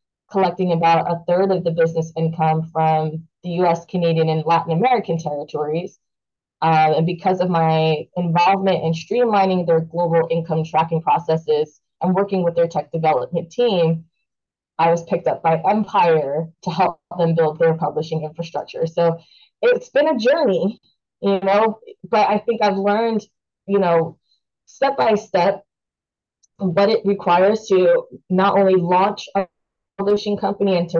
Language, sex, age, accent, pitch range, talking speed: English, female, 20-39, American, 165-200 Hz, 150 wpm